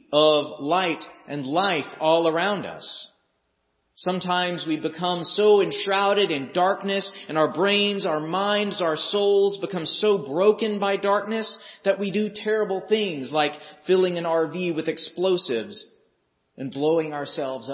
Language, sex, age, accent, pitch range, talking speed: English, male, 40-59, American, 135-180 Hz, 135 wpm